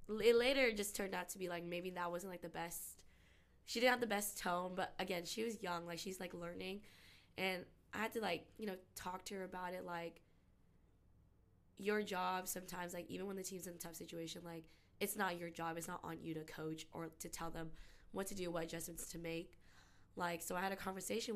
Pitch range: 165-185 Hz